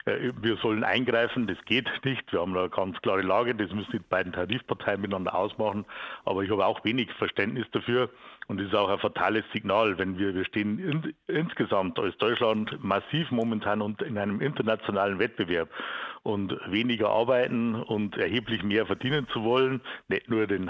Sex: male